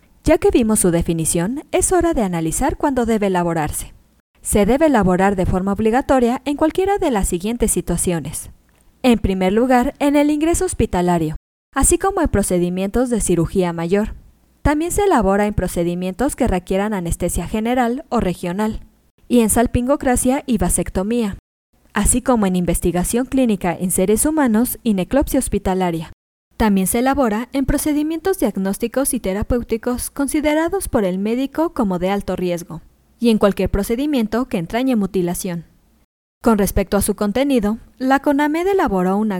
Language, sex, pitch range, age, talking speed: Spanish, female, 185-265 Hz, 20-39, 150 wpm